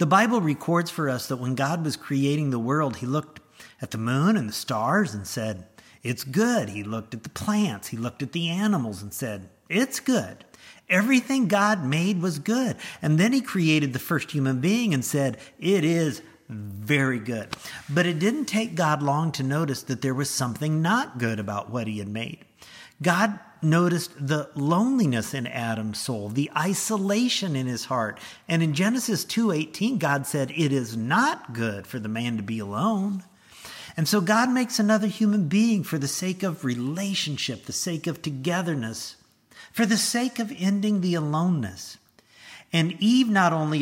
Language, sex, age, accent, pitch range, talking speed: English, male, 50-69, American, 125-190 Hz, 180 wpm